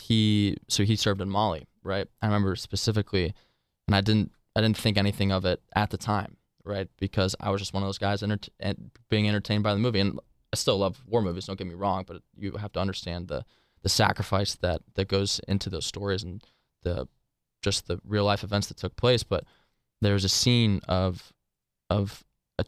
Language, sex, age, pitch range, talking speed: English, male, 20-39, 95-105 Hz, 205 wpm